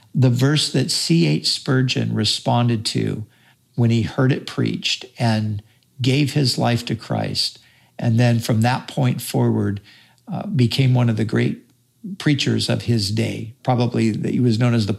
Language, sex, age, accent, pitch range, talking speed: English, male, 50-69, American, 115-130 Hz, 165 wpm